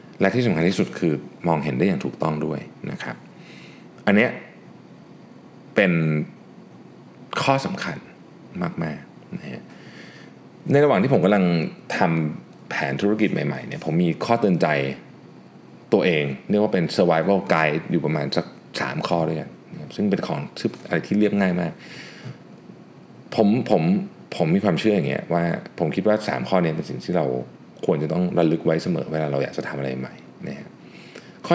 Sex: male